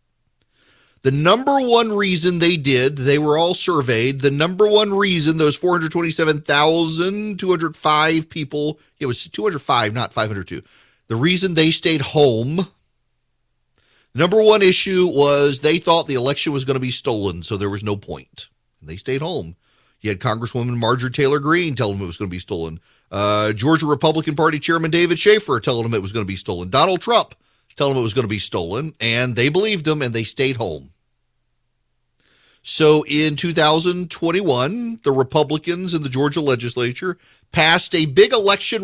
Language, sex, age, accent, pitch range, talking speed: English, male, 40-59, American, 125-175 Hz, 170 wpm